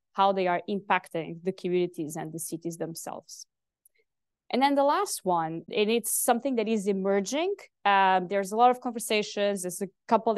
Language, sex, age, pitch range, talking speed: English, female, 20-39, 185-225 Hz, 175 wpm